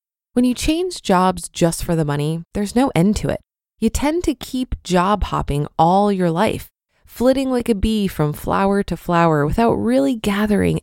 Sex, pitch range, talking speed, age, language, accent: female, 160-230 Hz, 185 wpm, 20-39, English, American